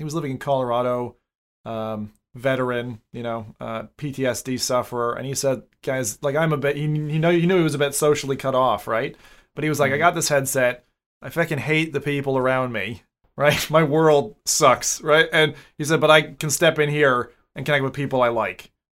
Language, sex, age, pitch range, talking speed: English, male, 30-49, 115-150 Hz, 215 wpm